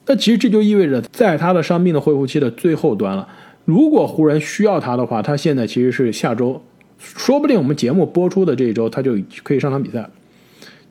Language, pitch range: Chinese, 140-215 Hz